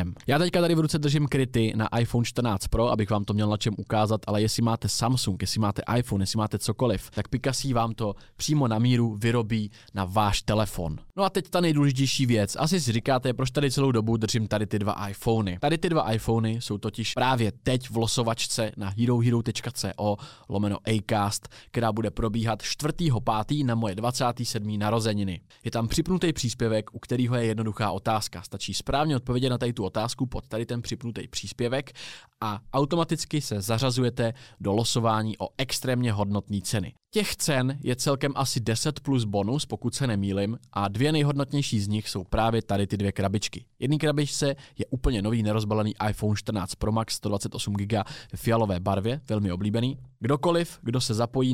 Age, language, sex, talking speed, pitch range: 20-39, Czech, male, 175 wpm, 105-130 Hz